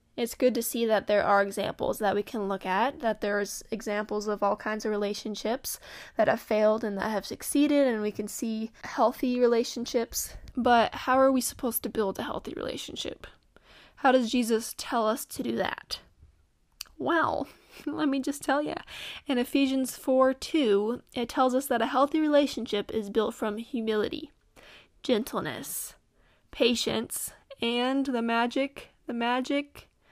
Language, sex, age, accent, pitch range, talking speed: English, female, 10-29, American, 215-260 Hz, 160 wpm